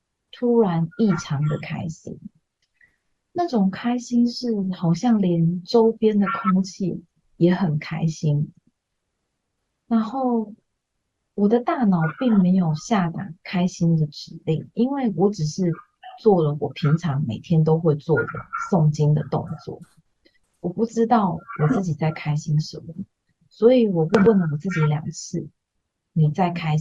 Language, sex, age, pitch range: Chinese, female, 30-49, 155-210 Hz